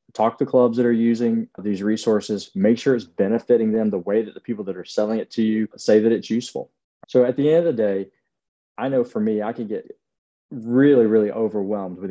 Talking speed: 230 wpm